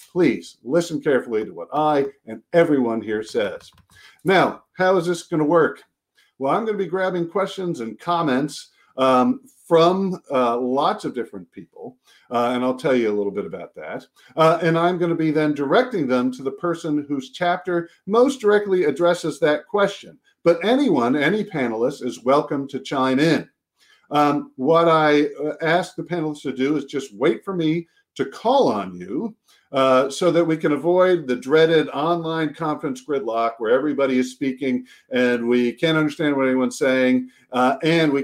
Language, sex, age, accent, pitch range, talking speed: English, male, 50-69, American, 130-185 Hz, 175 wpm